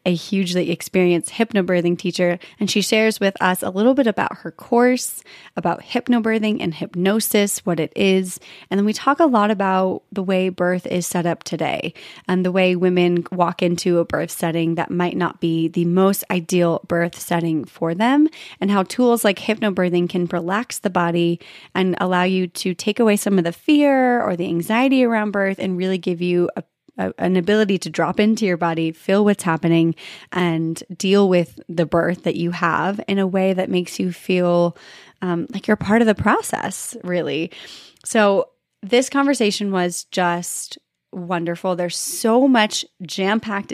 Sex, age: female, 30-49